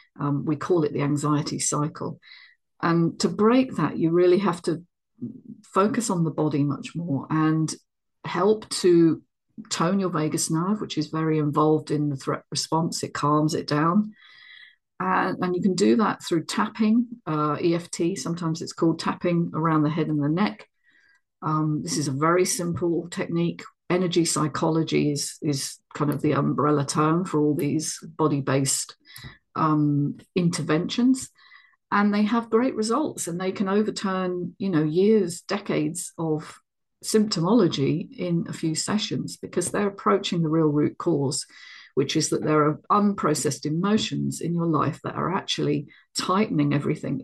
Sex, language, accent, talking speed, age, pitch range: female, English, British, 155 wpm, 40-59, 150-195 Hz